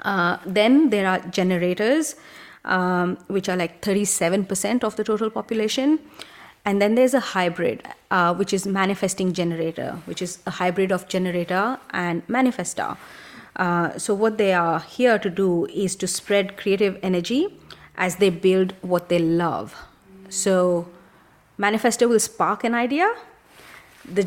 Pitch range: 175-210 Hz